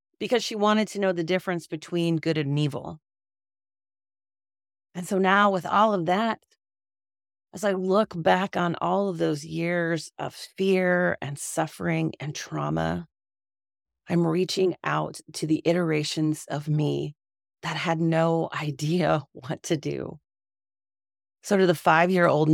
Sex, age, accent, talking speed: female, 30-49, American, 140 wpm